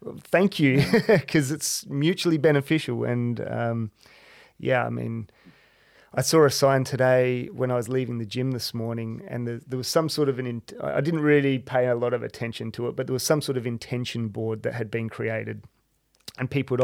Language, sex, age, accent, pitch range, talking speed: English, male, 30-49, Australian, 120-145 Hz, 205 wpm